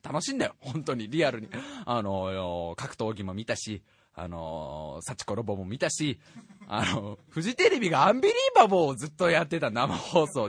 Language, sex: Japanese, male